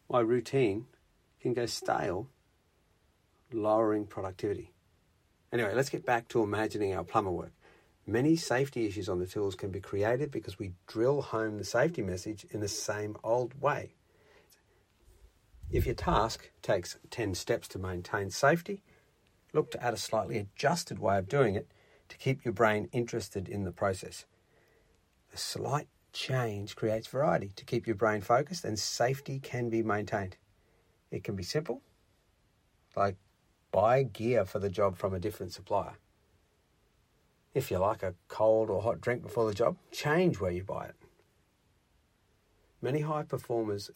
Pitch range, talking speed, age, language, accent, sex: 95-120 Hz, 155 wpm, 50-69, English, Australian, male